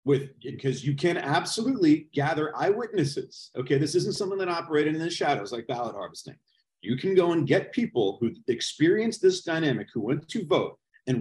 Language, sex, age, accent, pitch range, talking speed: English, male, 40-59, American, 140-190 Hz, 180 wpm